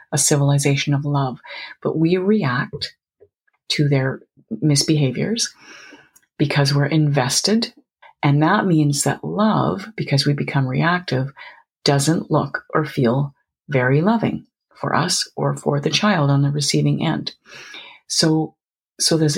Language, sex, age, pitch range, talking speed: English, female, 40-59, 140-190 Hz, 125 wpm